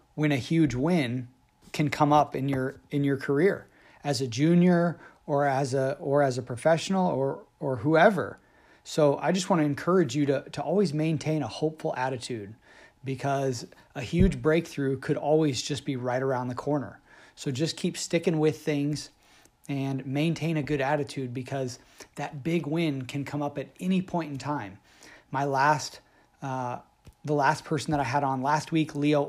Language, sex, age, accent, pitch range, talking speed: English, male, 30-49, American, 135-160 Hz, 180 wpm